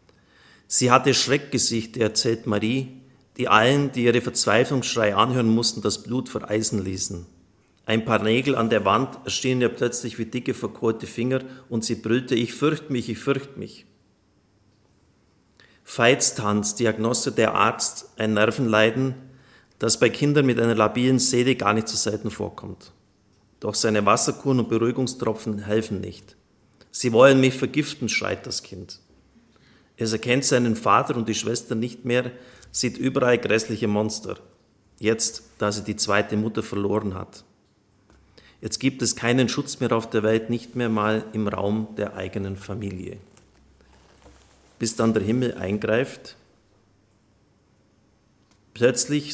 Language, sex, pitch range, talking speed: German, male, 105-125 Hz, 140 wpm